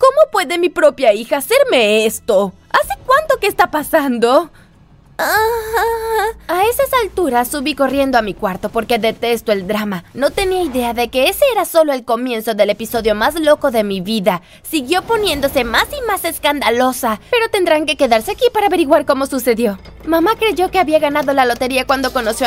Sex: female